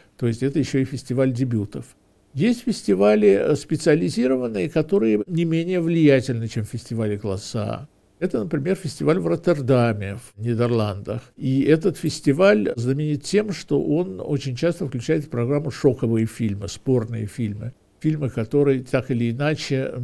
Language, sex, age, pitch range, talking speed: Russian, male, 60-79, 110-145 Hz, 140 wpm